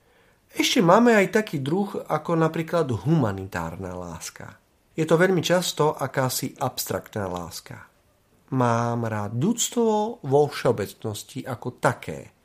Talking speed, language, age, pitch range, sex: 110 wpm, Slovak, 40-59, 115-170 Hz, male